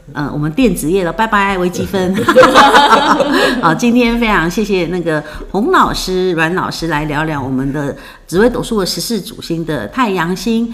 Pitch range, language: 160-215 Hz, Chinese